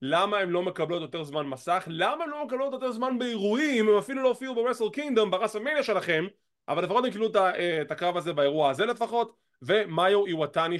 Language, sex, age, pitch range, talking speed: English, male, 20-39, 175-245 Hz, 195 wpm